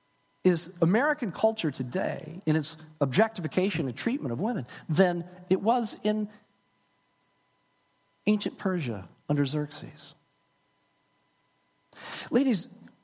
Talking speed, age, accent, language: 90 wpm, 50-69, American, English